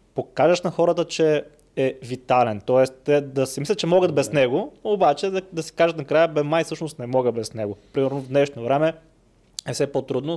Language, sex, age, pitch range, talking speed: Bulgarian, male, 20-39, 120-150 Hz, 205 wpm